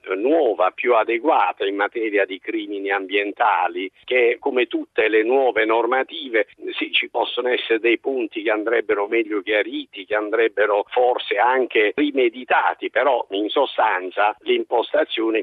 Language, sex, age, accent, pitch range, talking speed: Italian, male, 50-69, native, 320-435 Hz, 125 wpm